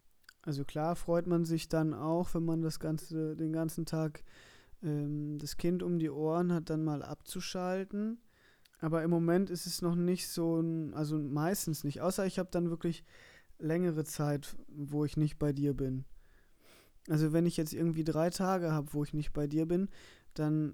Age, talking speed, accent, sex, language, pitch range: 20-39, 185 wpm, German, male, German, 150-165 Hz